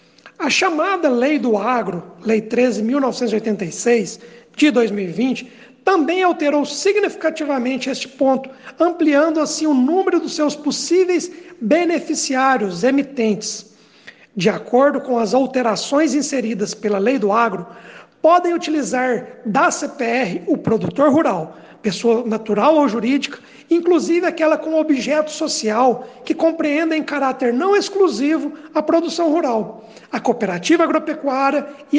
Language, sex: Portuguese, male